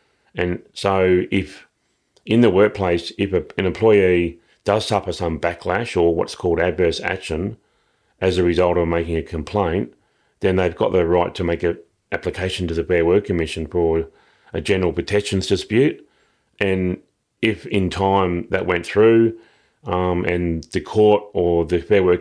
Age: 30-49